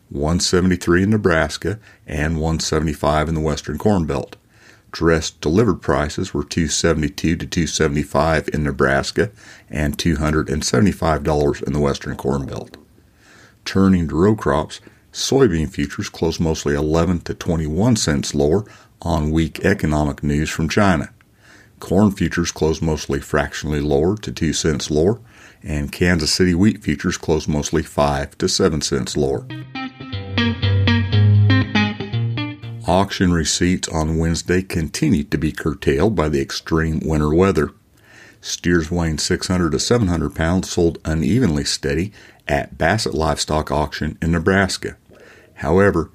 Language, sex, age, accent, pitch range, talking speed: English, male, 50-69, American, 75-95 Hz, 125 wpm